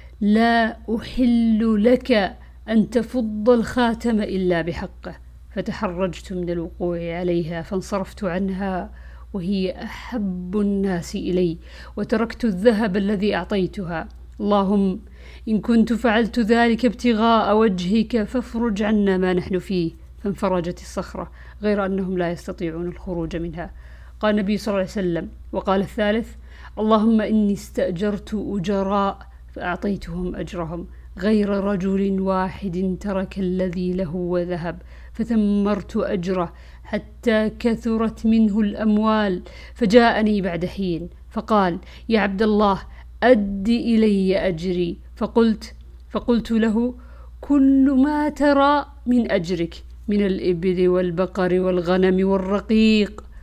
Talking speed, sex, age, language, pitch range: 105 wpm, female, 50-69, Arabic, 185-225 Hz